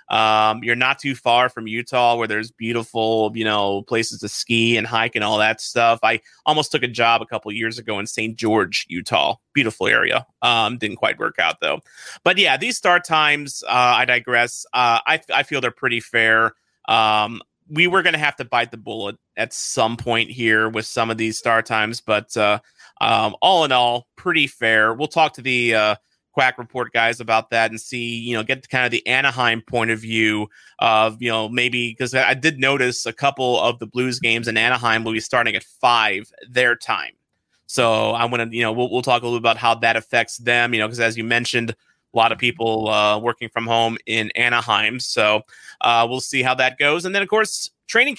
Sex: male